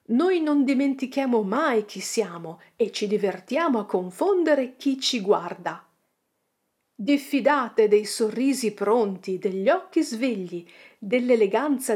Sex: female